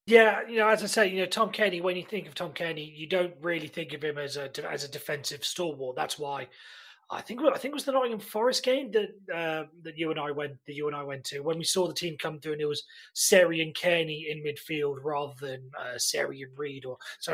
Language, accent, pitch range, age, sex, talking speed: English, British, 145-190 Hz, 30-49, male, 255 wpm